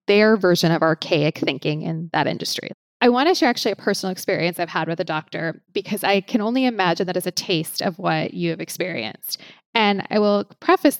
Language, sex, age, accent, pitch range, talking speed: English, female, 20-39, American, 170-205 Hz, 215 wpm